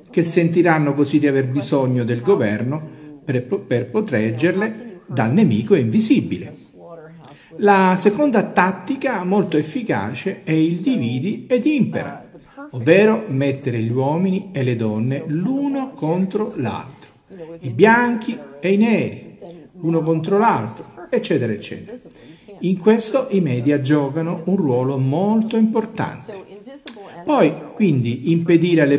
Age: 50-69